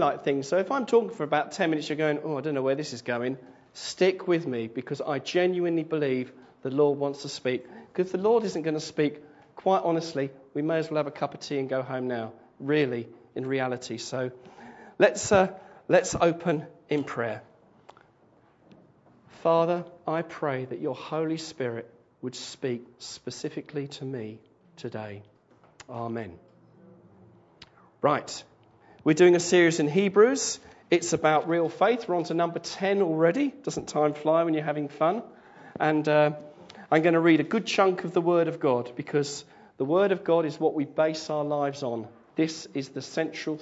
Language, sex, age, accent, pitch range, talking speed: English, male, 40-59, British, 135-170 Hz, 180 wpm